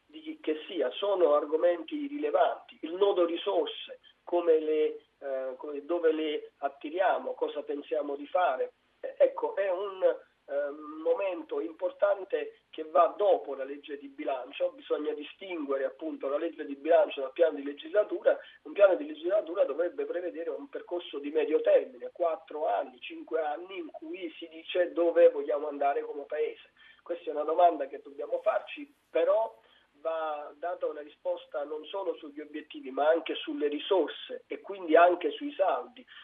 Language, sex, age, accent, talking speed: Italian, male, 40-59, native, 155 wpm